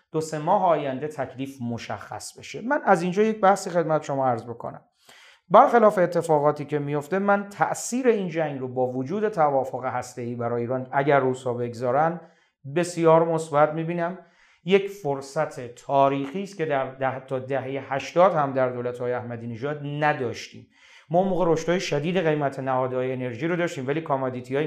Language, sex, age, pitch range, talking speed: Persian, male, 40-59, 130-175 Hz, 150 wpm